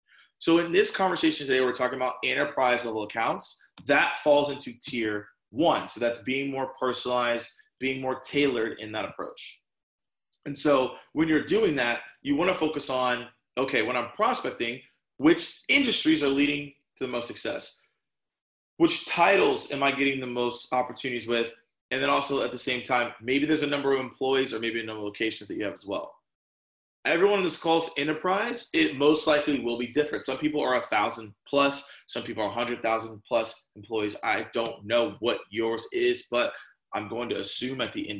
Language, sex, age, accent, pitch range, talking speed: English, male, 20-39, American, 115-155 Hz, 190 wpm